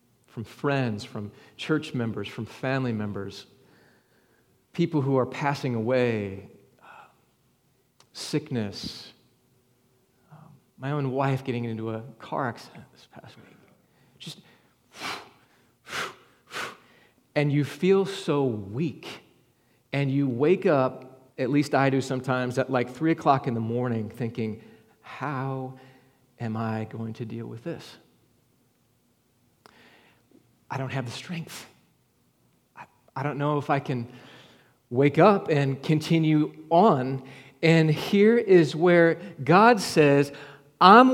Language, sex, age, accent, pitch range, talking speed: English, male, 40-59, American, 125-175 Hz, 115 wpm